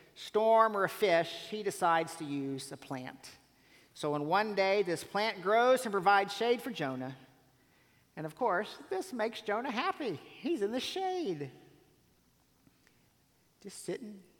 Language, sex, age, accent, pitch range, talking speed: English, male, 50-69, American, 135-215 Hz, 145 wpm